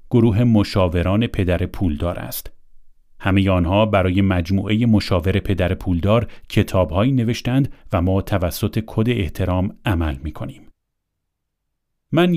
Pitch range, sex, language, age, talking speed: 90-125 Hz, male, Persian, 40-59, 105 wpm